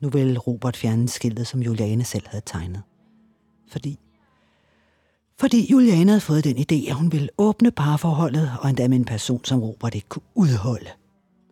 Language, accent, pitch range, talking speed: Danish, native, 115-180 Hz, 165 wpm